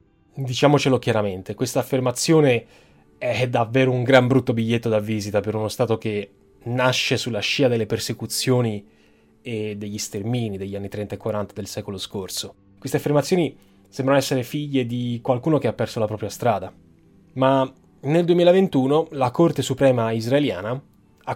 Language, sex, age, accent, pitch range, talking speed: Italian, male, 20-39, native, 110-140 Hz, 150 wpm